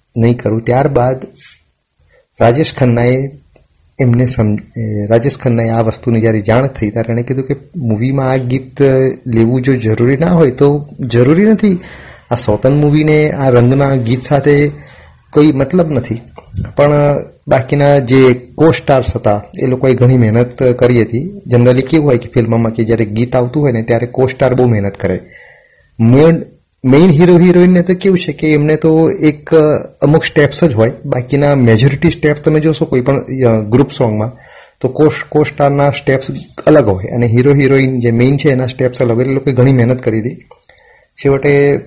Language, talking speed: Gujarati, 135 wpm